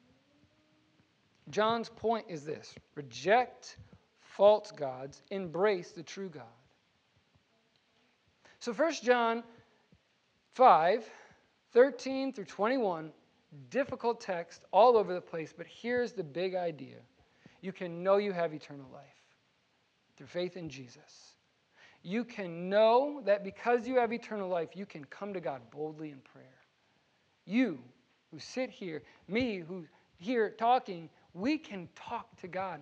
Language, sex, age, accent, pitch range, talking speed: English, male, 40-59, American, 170-240 Hz, 130 wpm